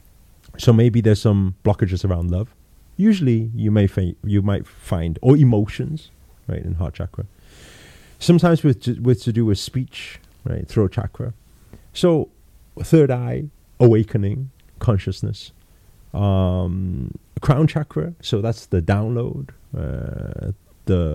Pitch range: 95-125 Hz